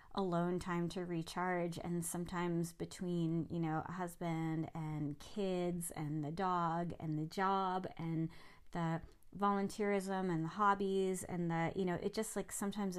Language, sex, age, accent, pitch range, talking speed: English, female, 30-49, American, 170-195 Hz, 155 wpm